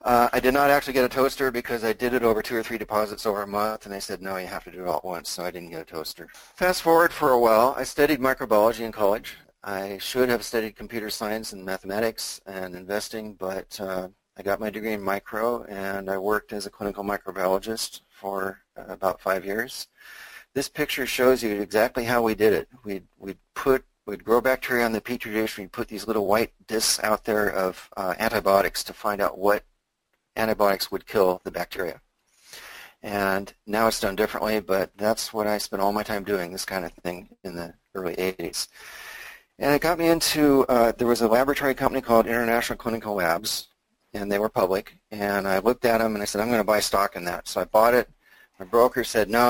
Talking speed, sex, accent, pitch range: 220 wpm, male, American, 100-120 Hz